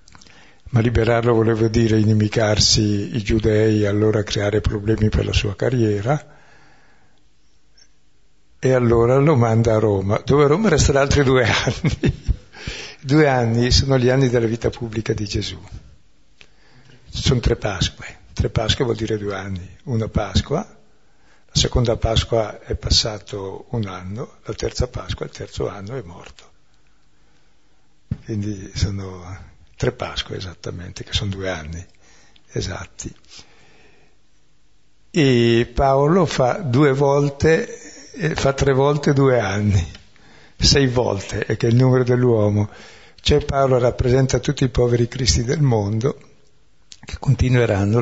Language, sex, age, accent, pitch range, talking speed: Italian, male, 60-79, native, 105-130 Hz, 130 wpm